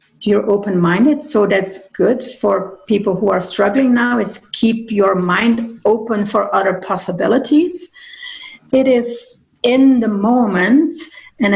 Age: 40-59